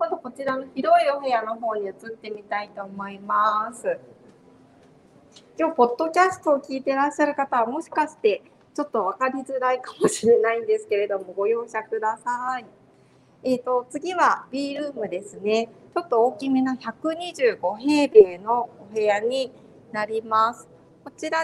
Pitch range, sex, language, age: 200-265 Hz, female, Japanese, 40-59